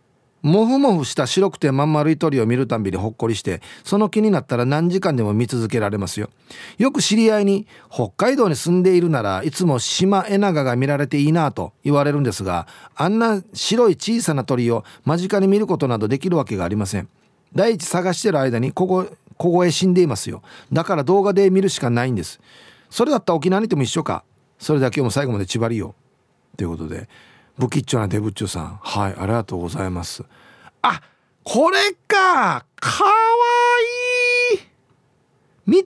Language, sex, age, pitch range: Japanese, male, 40-59, 120-200 Hz